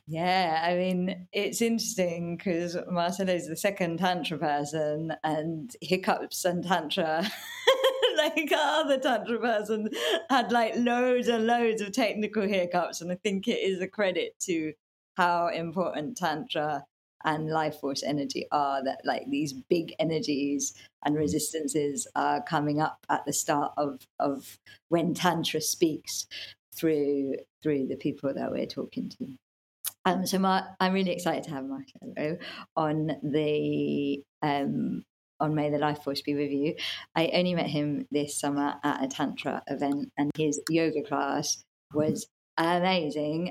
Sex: female